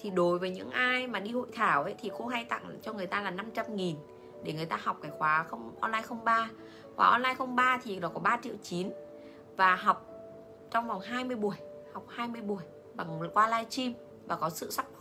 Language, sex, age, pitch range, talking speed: Vietnamese, female, 20-39, 155-220 Hz, 210 wpm